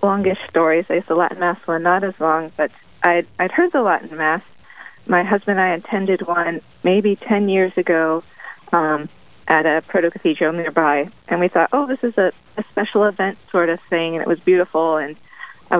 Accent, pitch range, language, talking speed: American, 160-205 Hz, English, 200 wpm